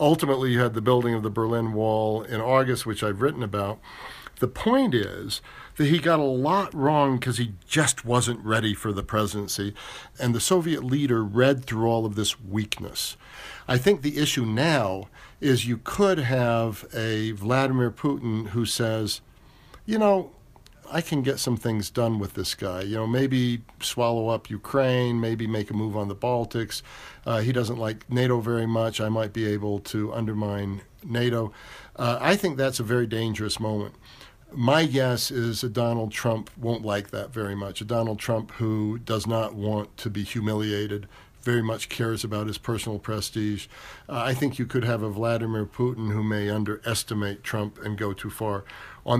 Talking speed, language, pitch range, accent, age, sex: 180 wpm, English, 105-125 Hz, American, 50-69, male